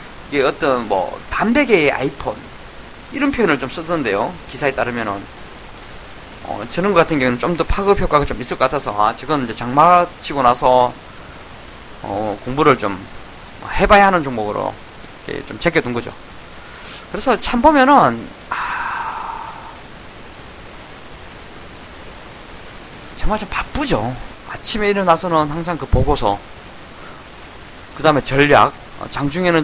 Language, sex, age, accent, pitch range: Korean, male, 20-39, native, 125-195 Hz